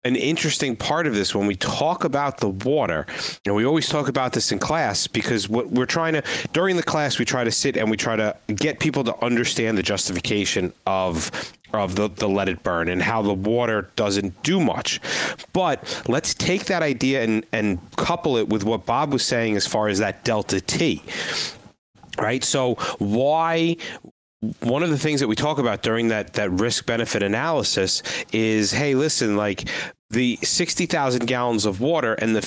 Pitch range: 105-140 Hz